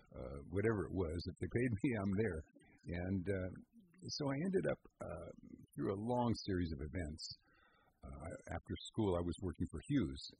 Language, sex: English, male